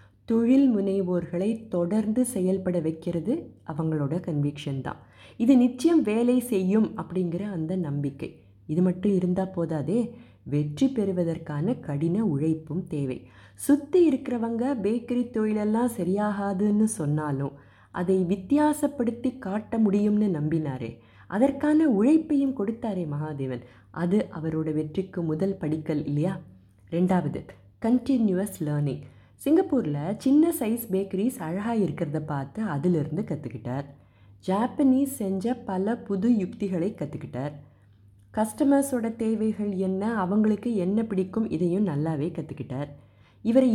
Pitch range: 150-230 Hz